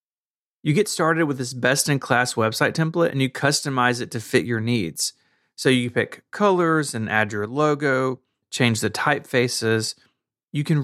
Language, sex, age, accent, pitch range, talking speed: English, male, 30-49, American, 115-150 Hz, 170 wpm